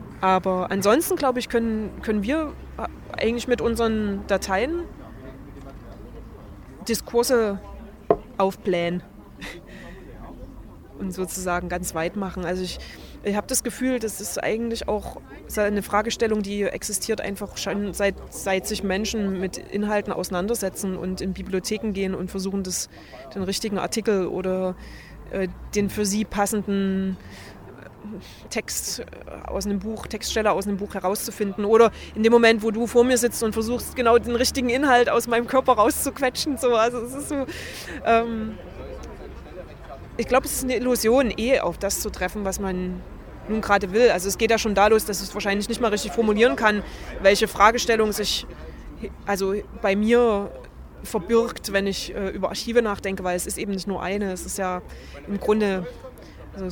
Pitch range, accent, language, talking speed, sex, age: 190-230 Hz, German, German, 155 wpm, female, 20-39